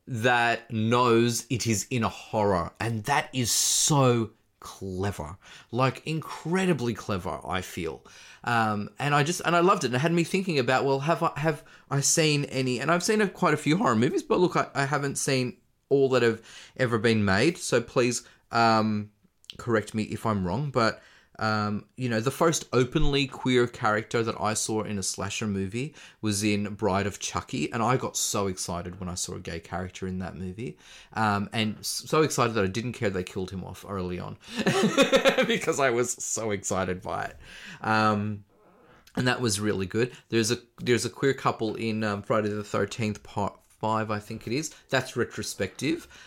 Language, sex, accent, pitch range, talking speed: English, male, Australian, 100-130 Hz, 190 wpm